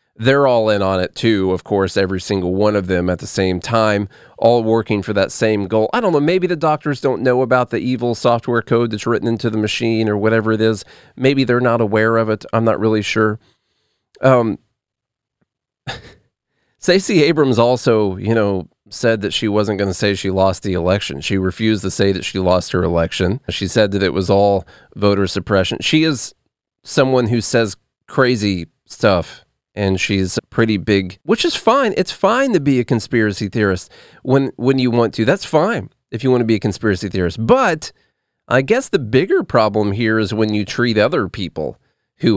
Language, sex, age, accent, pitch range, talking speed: English, male, 30-49, American, 95-125 Hz, 195 wpm